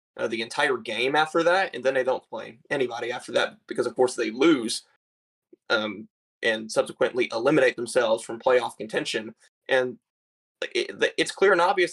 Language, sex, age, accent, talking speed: English, male, 20-39, American, 165 wpm